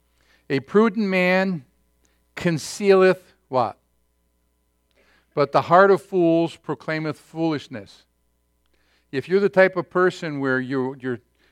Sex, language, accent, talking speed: male, English, American, 110 wpm